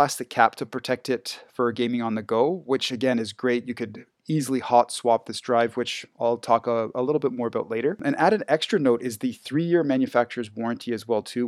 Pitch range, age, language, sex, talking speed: 115-135 Hz, 30-49, English, male, 235 wpm